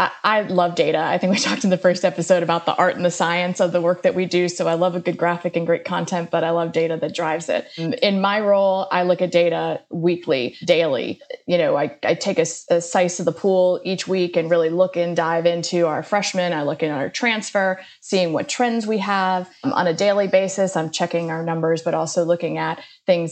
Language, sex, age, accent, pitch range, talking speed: English, female, 20-39, American, 170-200 Hz, 235 wpm